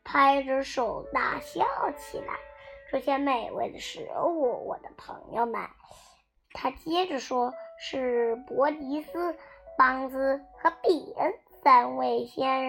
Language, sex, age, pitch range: Chinese, male, 20-39, 255-330 Hz